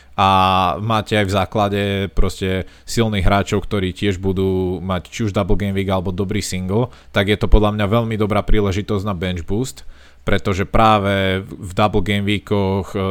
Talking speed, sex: 170 wpm, male